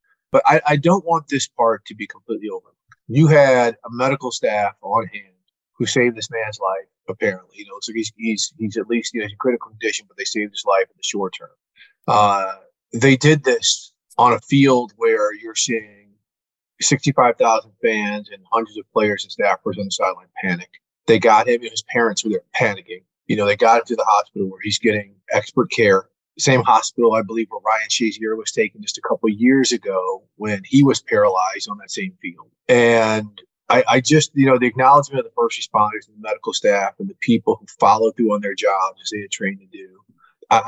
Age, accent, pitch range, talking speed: 30-49, American, 105-150 Hz, 215 wpm